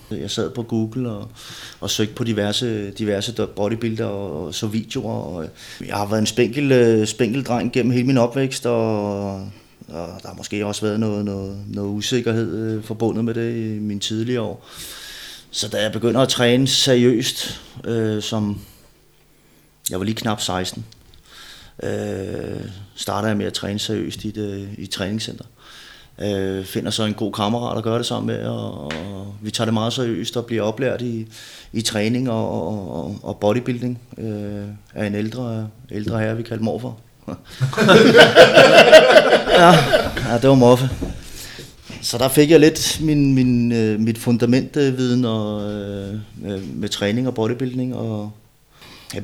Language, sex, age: Danish, male, 20-39